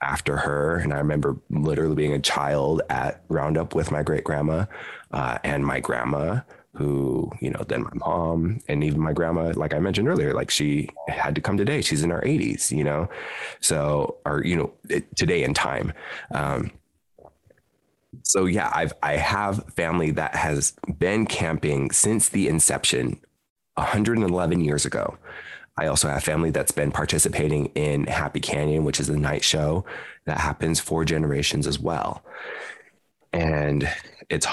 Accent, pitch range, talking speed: American, 75-80 Hz, 160 wpm